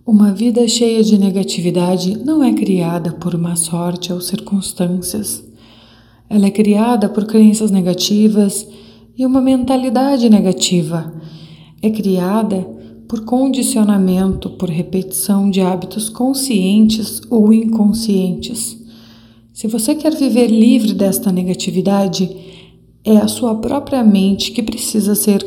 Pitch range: 180-230 Hz